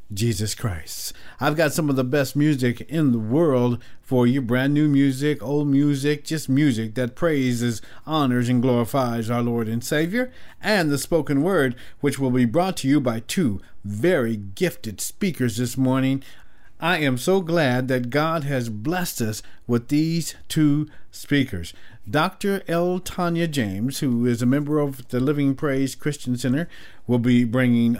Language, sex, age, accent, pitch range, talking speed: English, male, 50-69, American, 120-150 Hz, 165 wpm